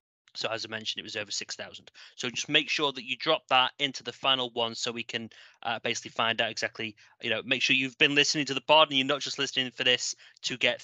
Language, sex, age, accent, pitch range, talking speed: English, male, 20-39, British, 115-135 Hz, 265 wpm